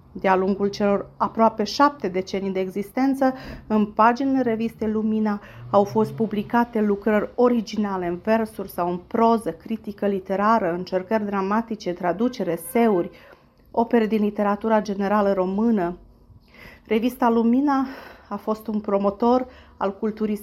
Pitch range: 195-230 Hz